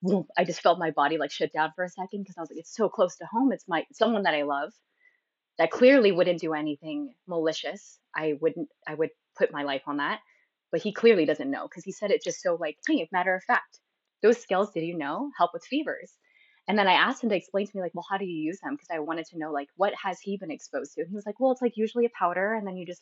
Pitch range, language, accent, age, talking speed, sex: 165-215 Hz, English, American, 20-39, 280 wpm, female